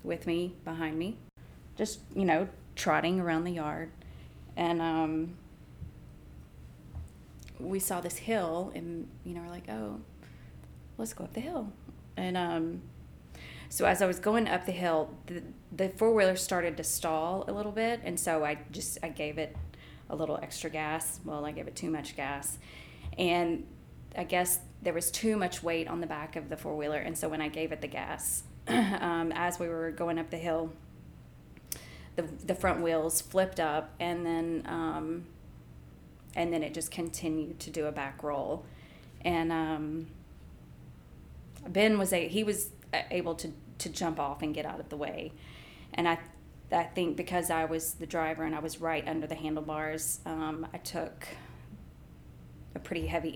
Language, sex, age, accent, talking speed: English, female, 30-49, American, 175 wpm